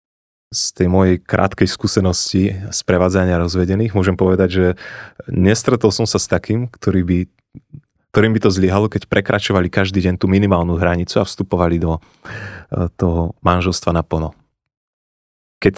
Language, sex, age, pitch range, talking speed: Slovak, male, 30-49, 85-100 Hz, 140 wpm